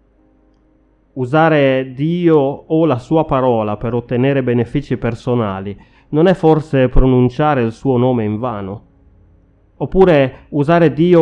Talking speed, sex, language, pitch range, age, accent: 120 wpm, male, Italian, 115-145 Hz, 30-49, native